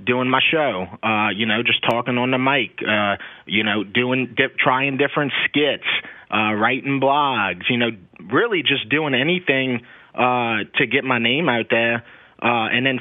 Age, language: 30-49, English